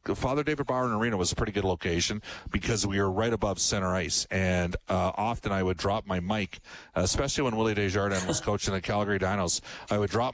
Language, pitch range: English, 100-120 Hz